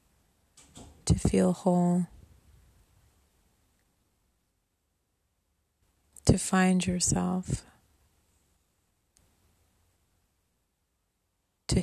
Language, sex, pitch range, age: English, female, 80-105 Hz, 30-49